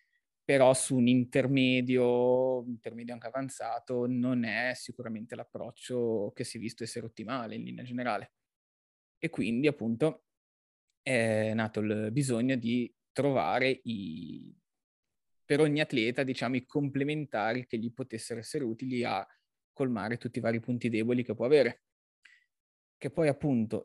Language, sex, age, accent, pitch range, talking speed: Italian, male, 20-39, native, 115-140 Hz, 135 wpm